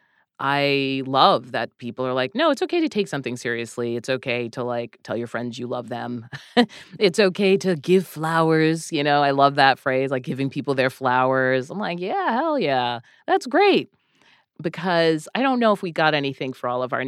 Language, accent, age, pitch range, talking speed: English, American, 30-49, 130-190 Hz, 205 wpm